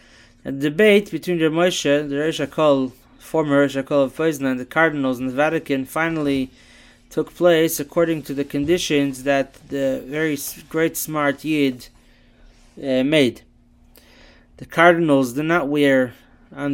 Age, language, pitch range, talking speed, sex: 20-39, English, 135-165 Hz, 145 wpm, male